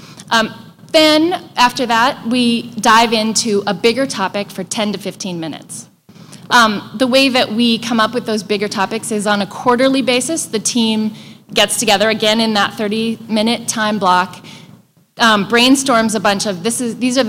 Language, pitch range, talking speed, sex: English, 190-235 Hz, 165 wpm, female